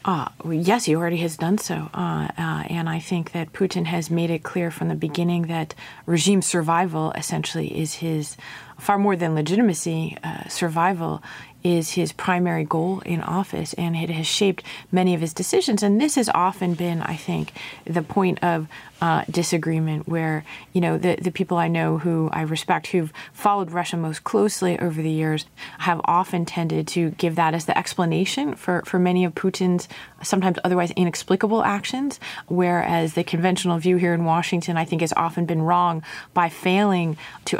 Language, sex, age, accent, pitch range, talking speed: English, female, 30-49, American, 165-185 Hz, 180 wpm